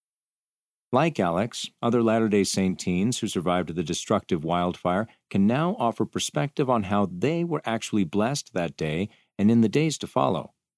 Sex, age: male, 40-59